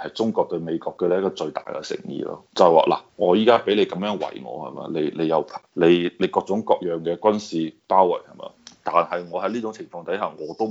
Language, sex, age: Chinese, male, 20-39